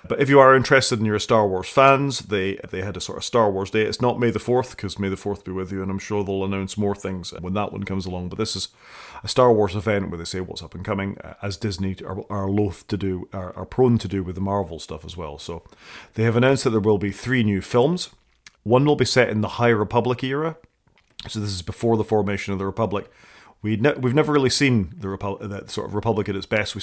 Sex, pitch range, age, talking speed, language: male, 95-115 Hz, 30-49, 270 wpm, English